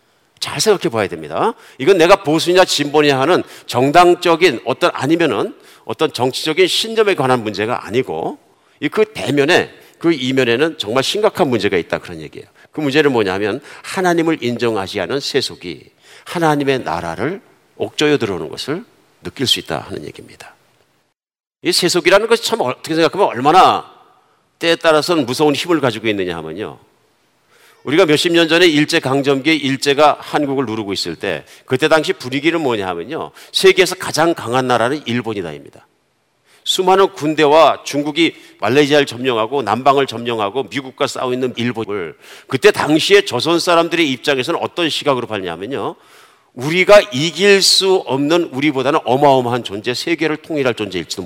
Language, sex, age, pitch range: Korean, male, 50-69, 130-175 Hz